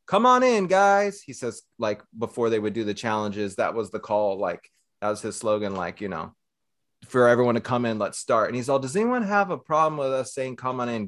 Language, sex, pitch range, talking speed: English, male, 110-135 Hz, 250 wpm